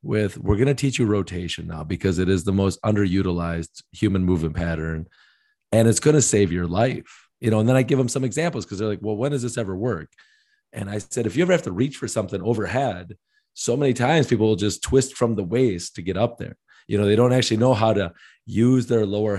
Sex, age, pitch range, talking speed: male, 40-59, 95-120 Hz, 245 wpm